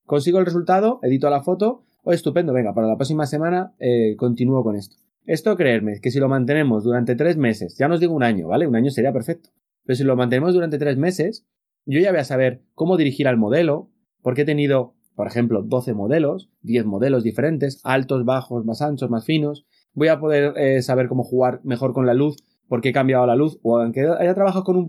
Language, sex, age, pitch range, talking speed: Spanish, male, 20-39, 125-165 Hz, 225 wpm